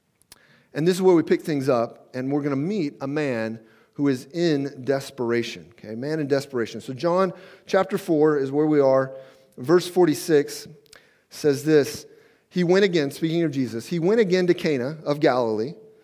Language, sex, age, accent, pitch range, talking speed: English, male, 40-59, American, 135-185 Hz, 180 wpm